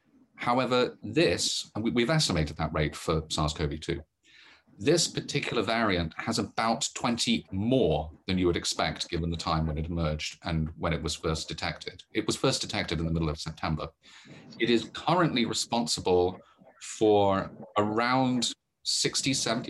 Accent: British